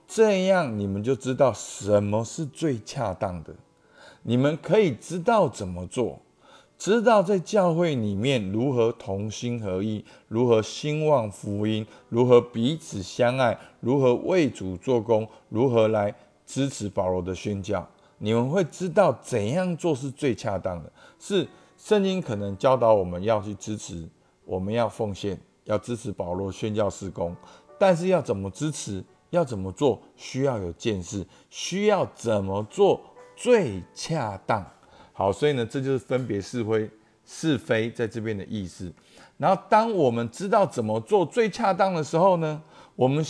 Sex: male